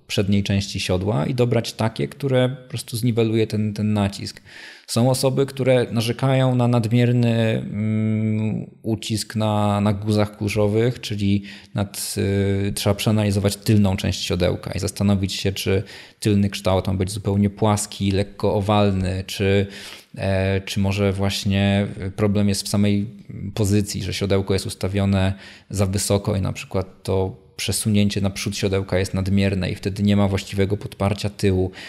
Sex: male